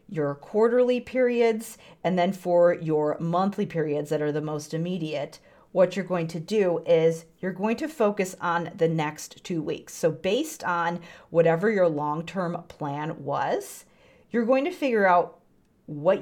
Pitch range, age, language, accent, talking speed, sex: 155-195 Hz, 40-59, English, American, 160 wpm, female